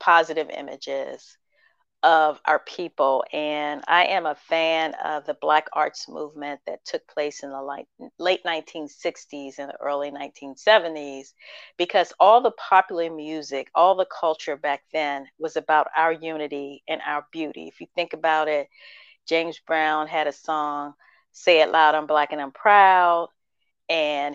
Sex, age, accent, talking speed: female, 40-59, American, 155 wpm